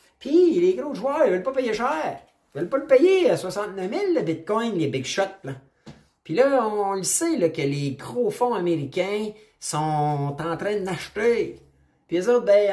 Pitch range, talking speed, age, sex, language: 135-200 Hz, 205 wpm, 30-49, male, French